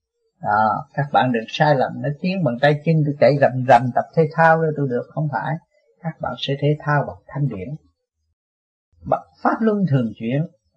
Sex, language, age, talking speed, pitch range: male, Vietnamese, 30-49, 195 wpm, 120-160 Hz